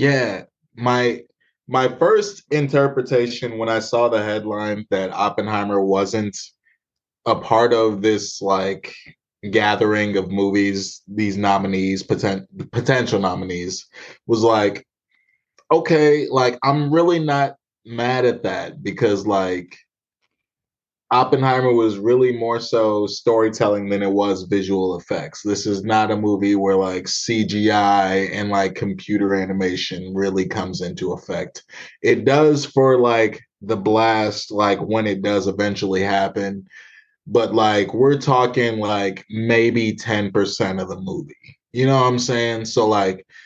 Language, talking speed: English, 130 wpm